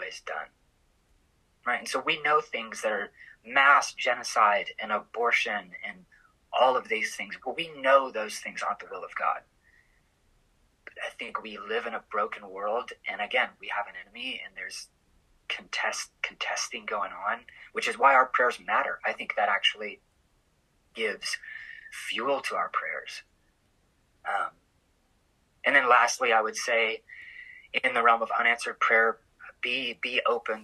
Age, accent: 30-49, American